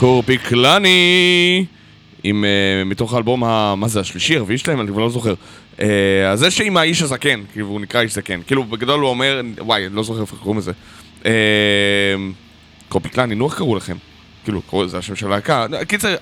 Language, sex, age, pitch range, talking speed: Hebrew, male, 20-39, 105-135 Hz, 180 wpm